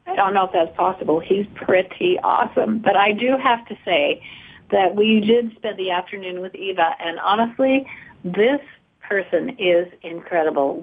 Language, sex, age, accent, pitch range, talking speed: English, female, 50-69, American, 180-230 Hz, 160 wpm